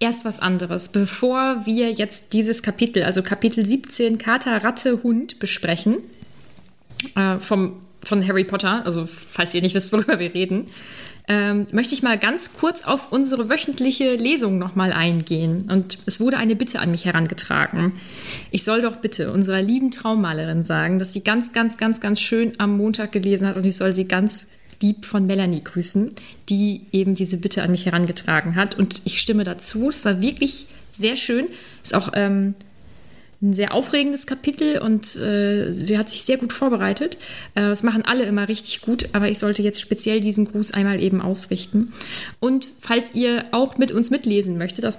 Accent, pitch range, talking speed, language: German, 195-235 Hz, 175 wpm, German